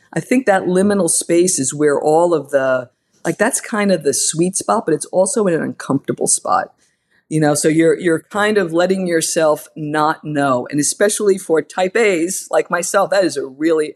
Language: English